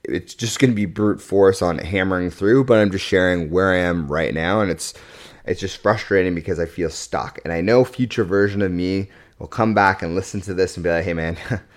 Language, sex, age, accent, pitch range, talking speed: English, male, 30-49, American, 90-115 Hz, 235 wpm